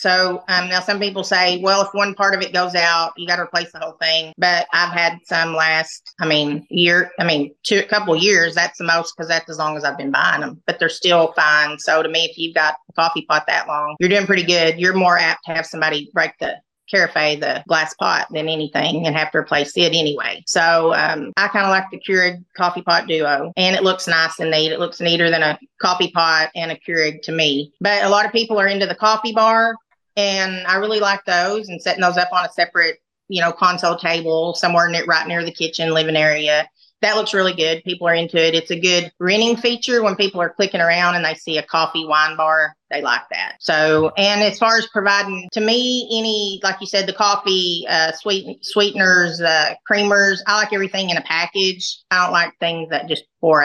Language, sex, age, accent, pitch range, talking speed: English, female, 30-49, American, 160-190 Hz, 235 wpm